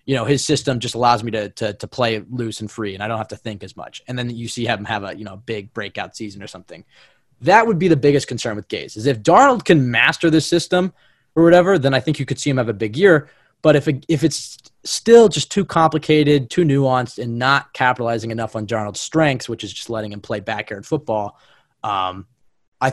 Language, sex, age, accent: English, male, 20-39, American